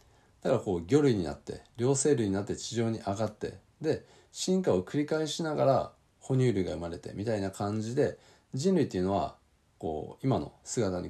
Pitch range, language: 95-150 Hz, Japanese